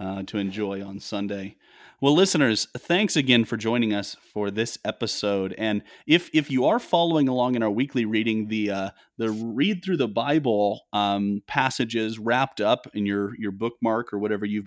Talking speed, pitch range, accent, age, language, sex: 180 wpm, 105-140 Hz, American, 30-49, English, male